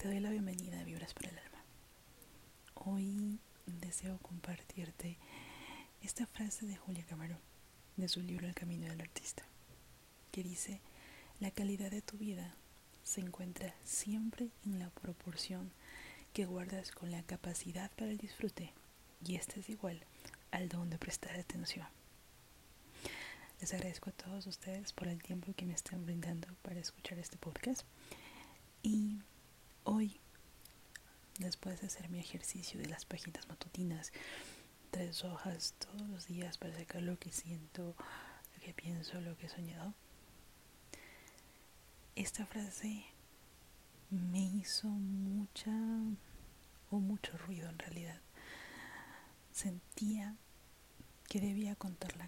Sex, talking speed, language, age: female, 130 wpm, Spanish, 30-49